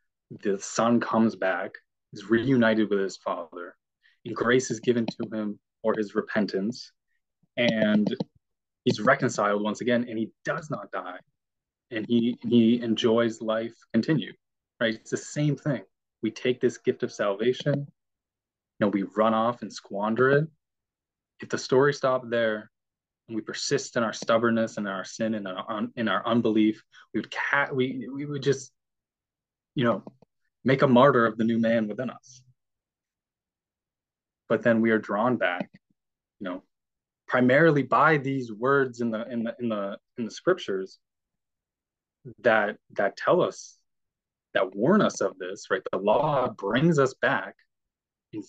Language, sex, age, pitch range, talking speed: English, male, 20-39, 105-125 Hz, 155 wpm